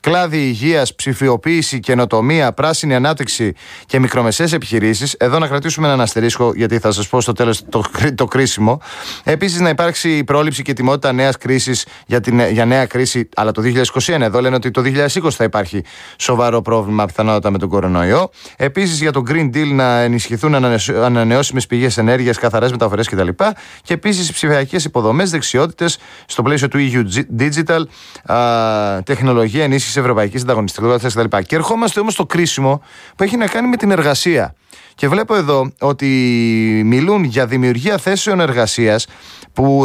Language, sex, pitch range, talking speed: Greek, male, 120-165 Hz, 160 wpm